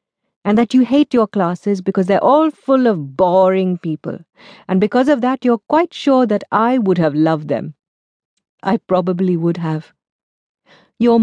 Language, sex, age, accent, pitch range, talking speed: English, female, 50-69, Indian, 170-240 Hz, 165 wpm